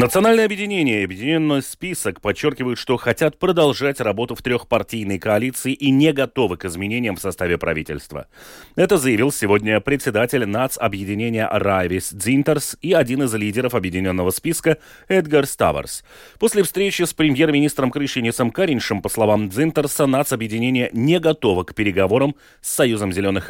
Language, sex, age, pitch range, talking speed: Russian, male, 30-49, 105-150 Hz, 135 wpm